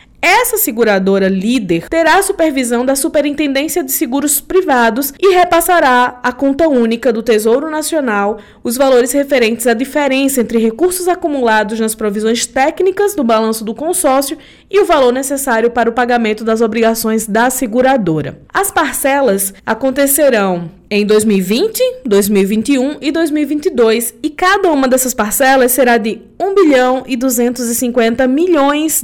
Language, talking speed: Portuguese, 130 wpm